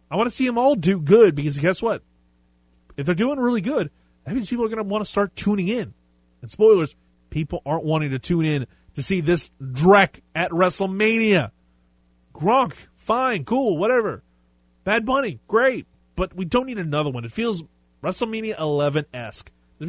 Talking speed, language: 180 wpm, English